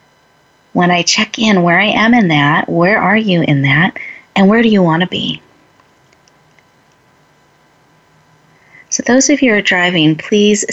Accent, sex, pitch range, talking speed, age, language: American, female, 160-255 Hz, 160 wpm, 30-49, English